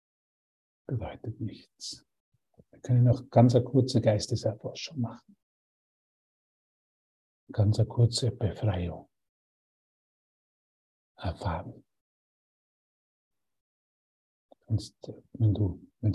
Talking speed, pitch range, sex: 65 wpm, 95-120 Hz, male